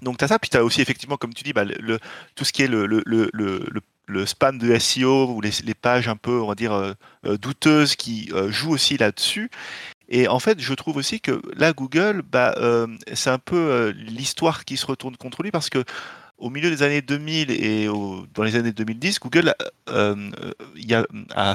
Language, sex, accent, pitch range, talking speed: French, male, French, 115-150 Hz, 230 wpm